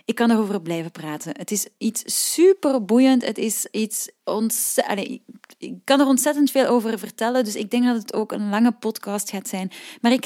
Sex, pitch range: female, 195-250 Hz